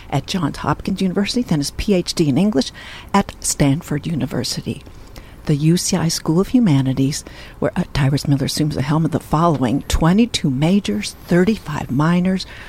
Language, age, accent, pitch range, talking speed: English, 60-79, American, 145-180 Hz, 145 wpm